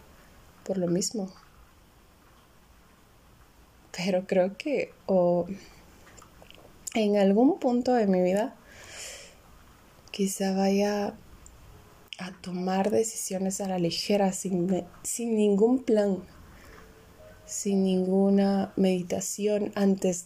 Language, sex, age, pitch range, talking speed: Spanish, female, 20-39, 180-210 Hz, 90 wpm